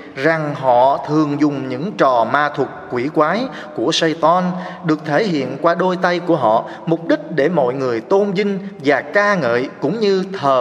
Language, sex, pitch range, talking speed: Vietnamese, male, 135-180 Hz, 185 wpm